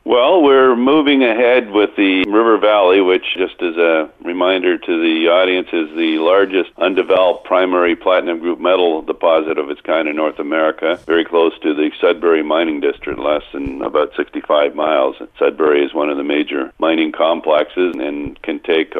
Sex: male